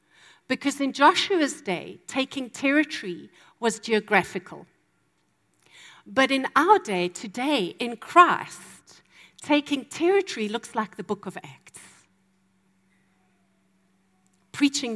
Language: English